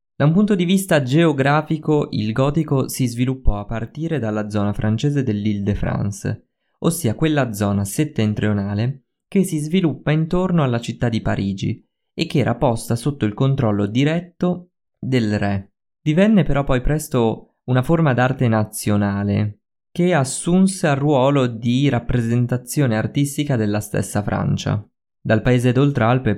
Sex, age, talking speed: male, 20-39, 135 wpm